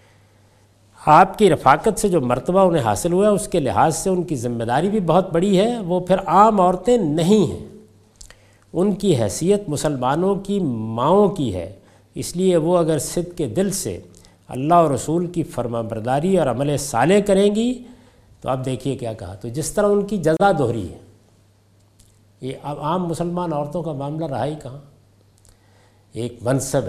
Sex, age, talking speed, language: male, 50-69, 175 wpm, Urdu